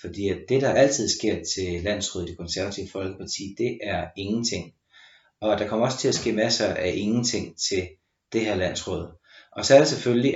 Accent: native